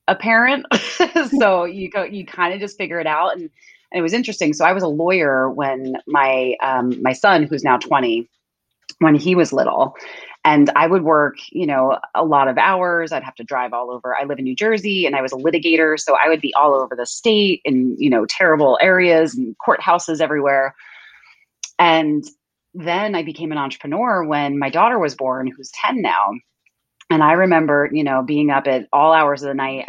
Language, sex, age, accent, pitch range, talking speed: English, female, 30-49, American, 130-180 Hz, 205 wpm